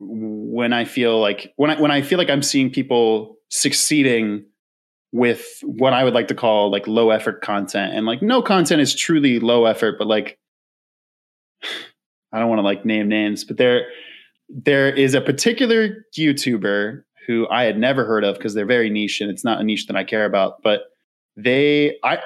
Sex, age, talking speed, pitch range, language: male, 20-39, 190 wpm, 110-145 Hz, English